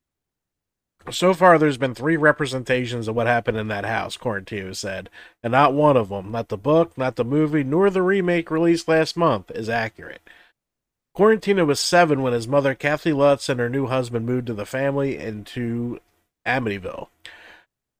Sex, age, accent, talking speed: male, 40-59, American, 170 wpm